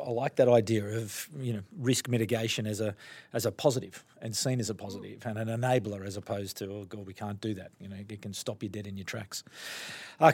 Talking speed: 245 wpm